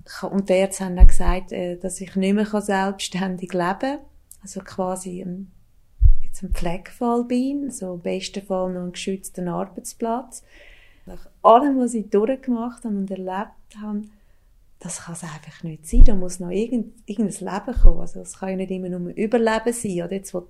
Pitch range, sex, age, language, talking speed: 185-225 Hz, female, 30-49, German, 170 wpm